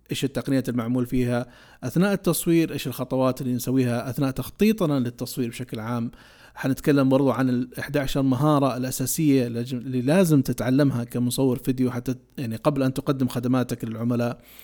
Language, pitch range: Arabic, 125-145 Hz